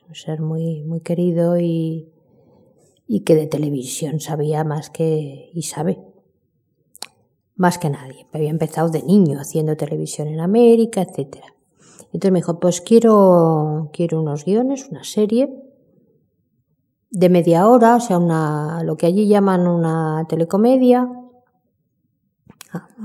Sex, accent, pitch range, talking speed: female, Spanish, 155-195 Hz, 125 wpm